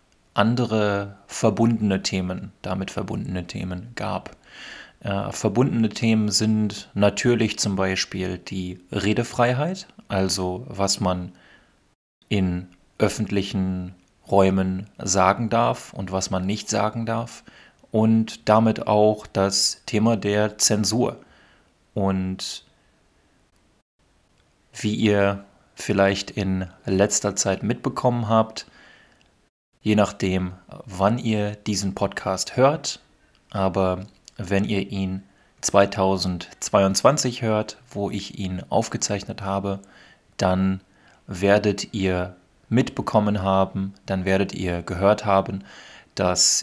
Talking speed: 95 wpm